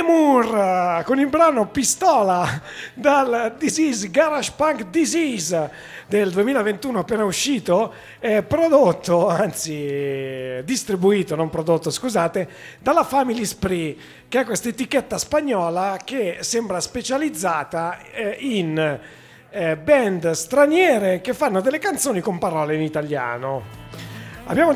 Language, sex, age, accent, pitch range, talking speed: Italian, male, 40-59, native, 165-260 Hz, 110 wpm